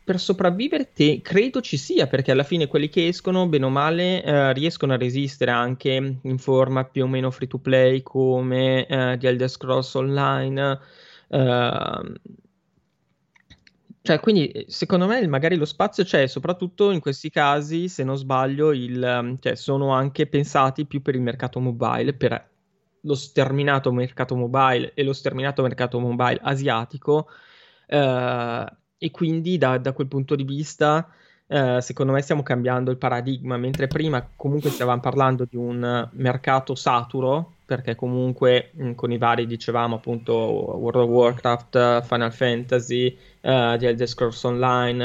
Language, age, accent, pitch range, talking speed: Italian, 20-39, native, 125-145 Hz, 150 wpm